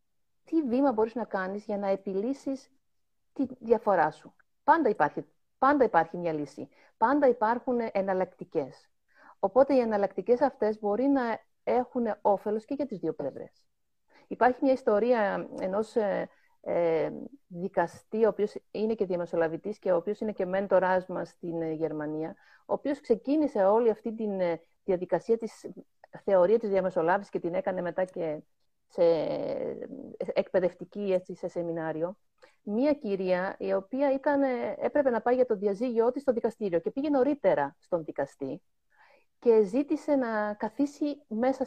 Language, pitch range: Greek, 190-260 Hz